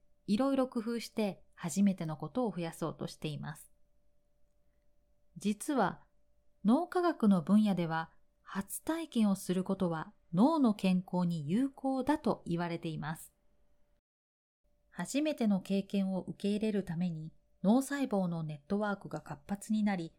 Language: Japanese